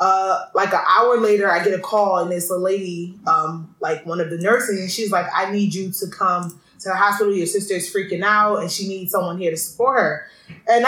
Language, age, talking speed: English, 20-39, 245 wpm